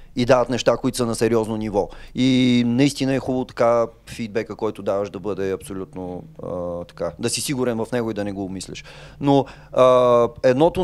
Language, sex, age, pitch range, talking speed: Bulgarian, male, 30-49, 115-145 Hz, 190 wpm